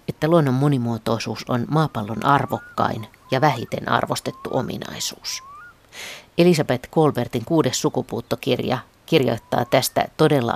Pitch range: 115-140 Hz